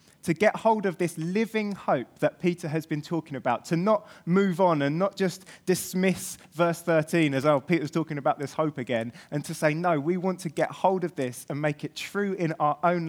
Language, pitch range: English, 145-180 Hz